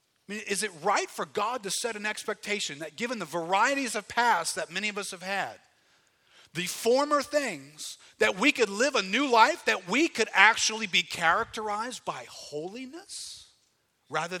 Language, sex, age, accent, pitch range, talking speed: English, male, 40-59, American, 150-220 Hz, 175 wpm